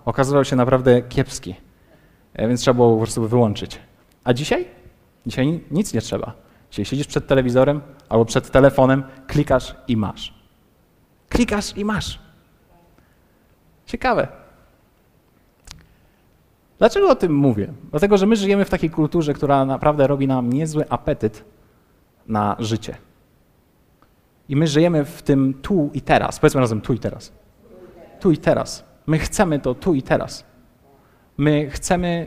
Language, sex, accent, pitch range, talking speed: Polish, male, native, 125-170 Hz, 135 wpm